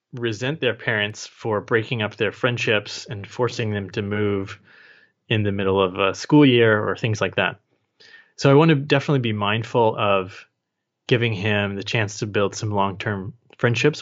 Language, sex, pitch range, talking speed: English, male, 105-125 Hz, 175 wpm